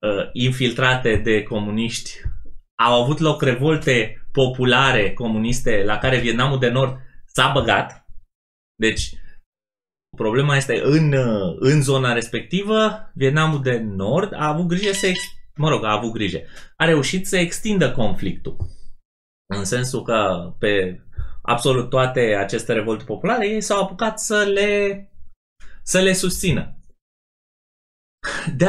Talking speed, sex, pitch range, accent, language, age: 120 wpm, male, 105-150 Hz, native, Romanian, 20-39